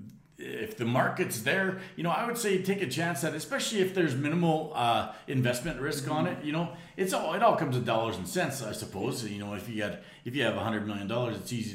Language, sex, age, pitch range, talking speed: English, male, 40-59, 115-150 Hz, 240 wpm